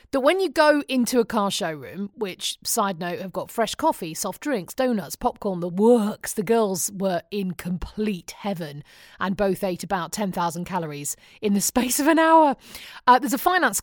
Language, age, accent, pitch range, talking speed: English, 40-59, British, 185-255 Hz, 185 wpm